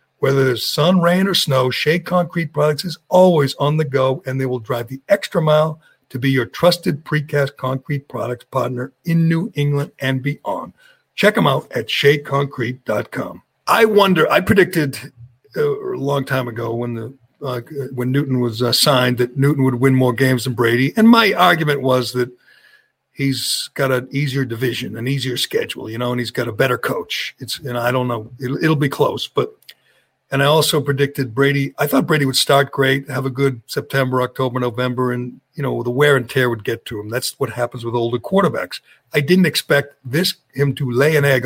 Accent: American